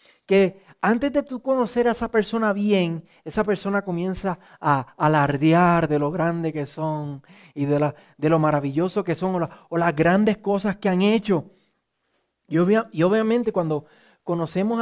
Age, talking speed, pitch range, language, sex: 30-49, 160 wpm, 160-215 Hz, Spanish, male